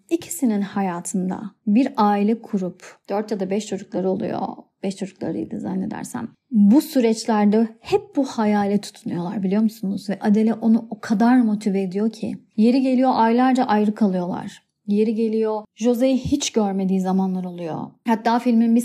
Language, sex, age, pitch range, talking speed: Turkish, female, 30-49, 210-285 Hz, 145 wpm